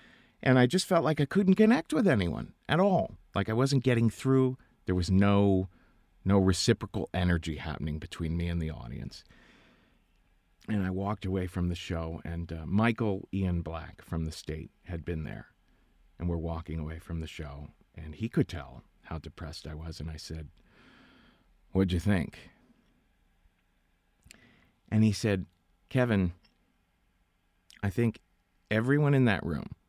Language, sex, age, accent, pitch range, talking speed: English, male, 40-59, American, 85-115 Hz, 155 wpm